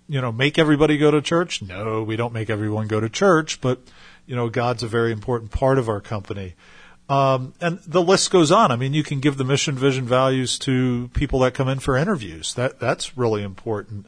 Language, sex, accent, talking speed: English, male, American, 220 wpm